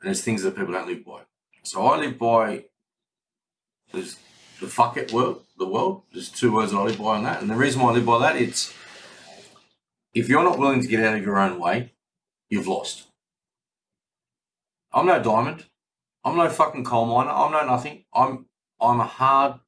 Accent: Australian